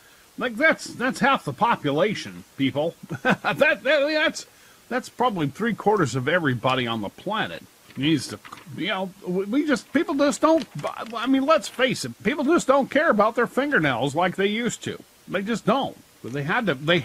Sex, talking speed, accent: male, 180 wpm, American